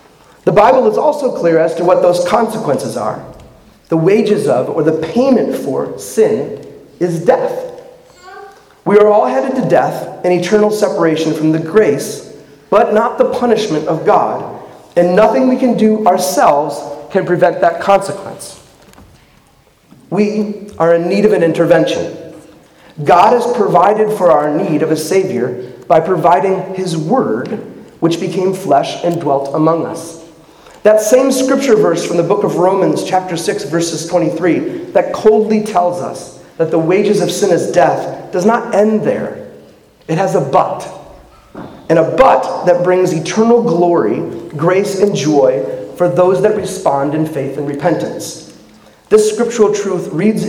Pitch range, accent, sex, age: 165-215 Hz, American, male, 40-59